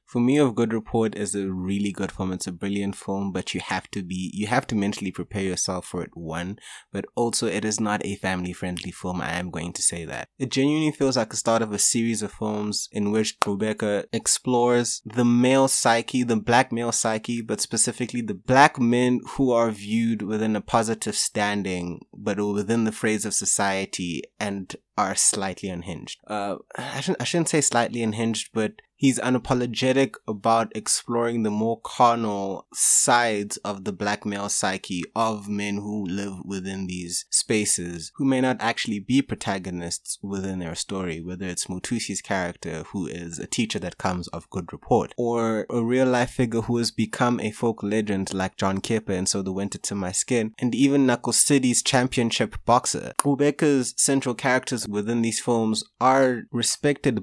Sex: male